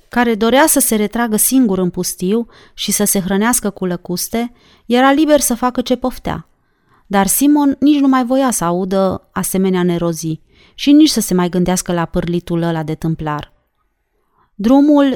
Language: Romanian